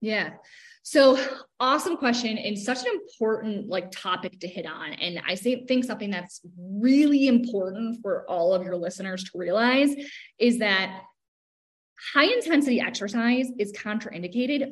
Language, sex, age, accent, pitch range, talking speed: English, female, 20-39, American, 195-290 Hz, 140 wpm